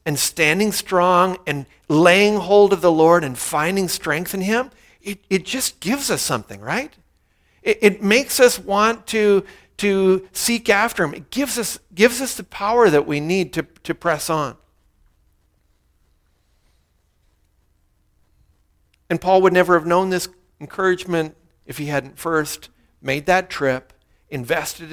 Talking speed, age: 145 wpm, 50-69